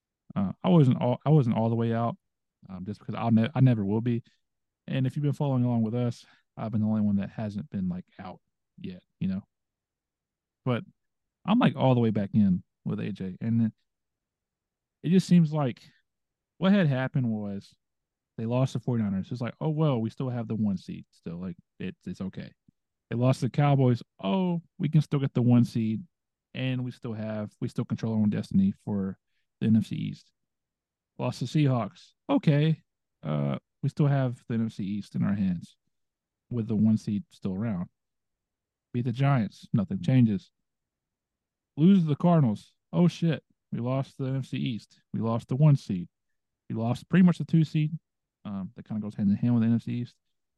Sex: male